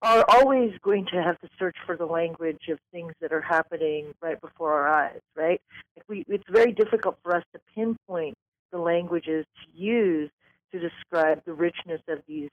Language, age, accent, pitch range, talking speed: English, 40-59, American, 165-205 Hz, 180 wpm